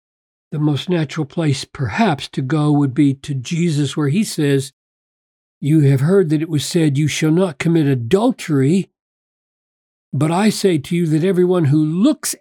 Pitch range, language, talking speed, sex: 140-190 Hz, English, 170 wpm, male